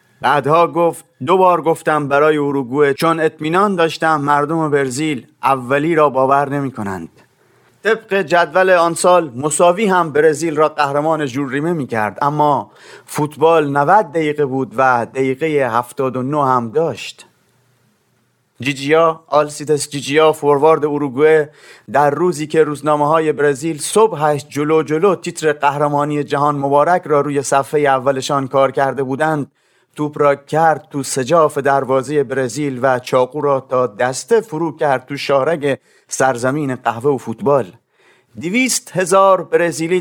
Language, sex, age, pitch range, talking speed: Persian, male, 30-49, 140-165 Hz, 135 wpm